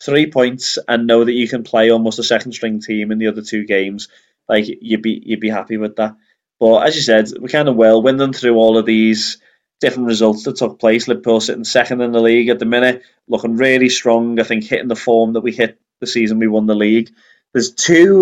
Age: 20-39